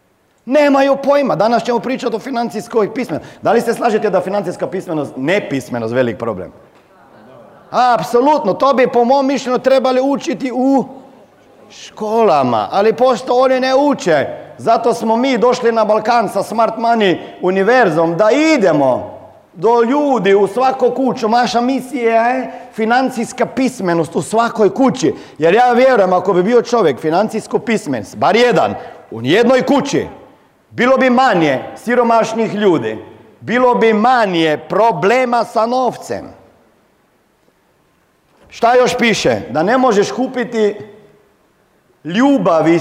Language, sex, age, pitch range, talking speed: Croatian, male, 40-59, 210-260 Hz, 130 wpm